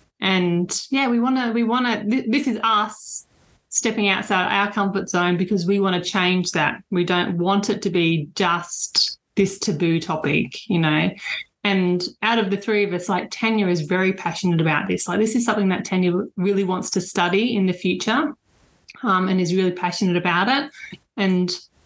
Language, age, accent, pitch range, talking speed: English, 30-49, Australian, 180-215 Hz, 185 wpm